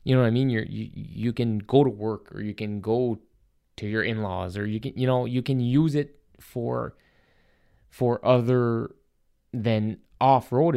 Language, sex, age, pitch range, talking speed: English, male, 20-39, 105-125 Hz, 185 wpm